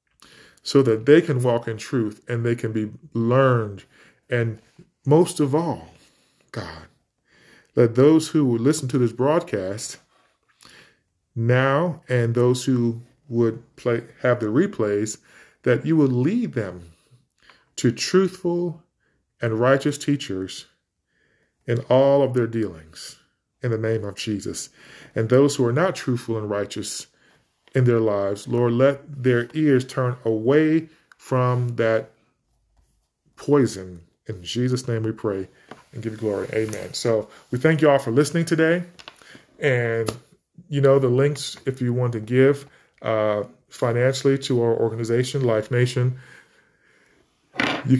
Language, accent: English, American